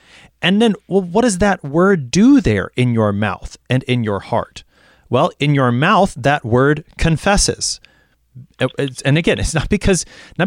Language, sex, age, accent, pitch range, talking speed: English, male, 30-49, American, 110-165 Hz, 170 wpm